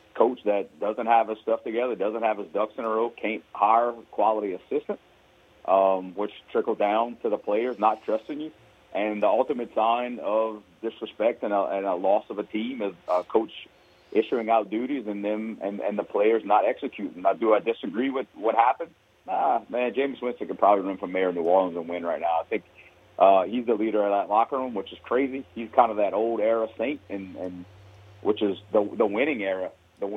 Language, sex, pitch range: English, male, 100-115 Hz